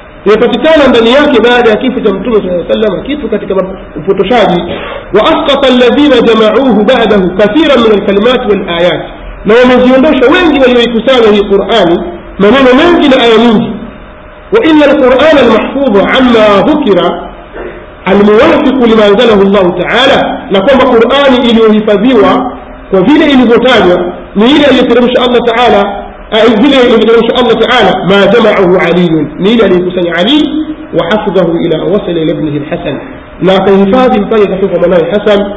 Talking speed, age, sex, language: 135 wpm, 50-69, male, Swahili